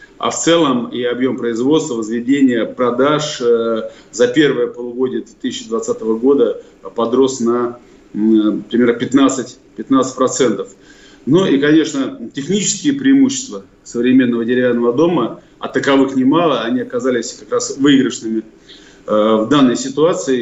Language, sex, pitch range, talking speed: Russian, male, 120-155 Hz, 110 wpm